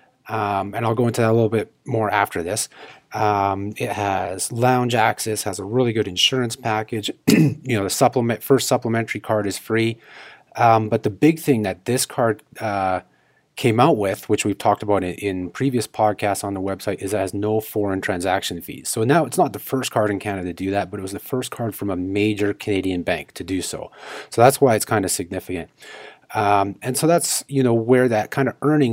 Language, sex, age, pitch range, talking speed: English, male, 30-49, 100-120 Hz, 220 wpm